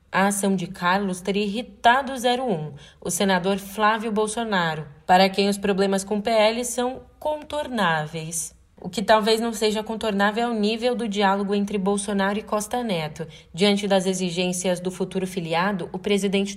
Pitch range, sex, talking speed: 180-220 Hz, female, 165 wpm